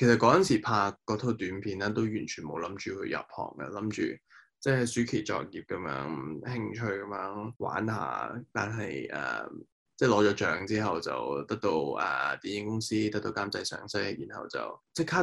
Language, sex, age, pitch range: Chinese, male, 10-29, 105-120 Hz